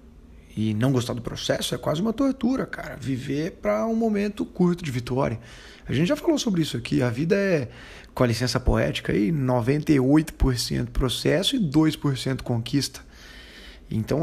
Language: Portuguese